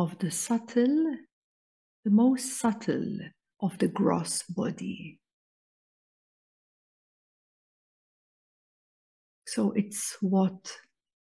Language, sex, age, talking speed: English, female, 50-69, 70 wpm